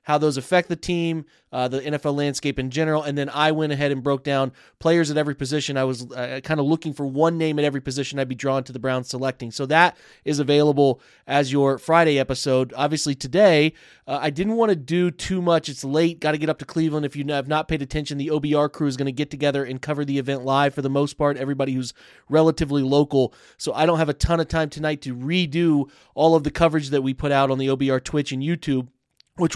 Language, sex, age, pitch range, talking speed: English, male, 20-39, 135-155 Hz, 245 wpm